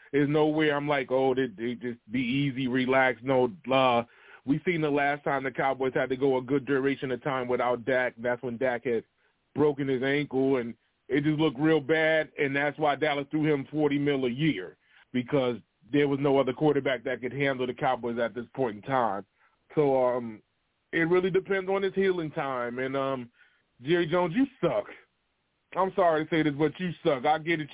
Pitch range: 135-170 Hz